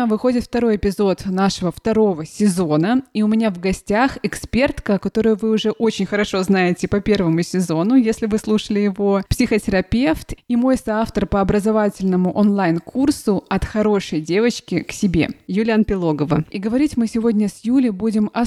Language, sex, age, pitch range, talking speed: Russian, female, 20-39, 185-225 Hz, 155 wpm